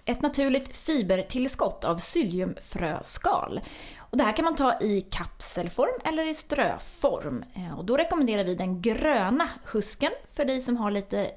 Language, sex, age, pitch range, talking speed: Swedish, female, 30-49, 185-270 Hz, 135 wpm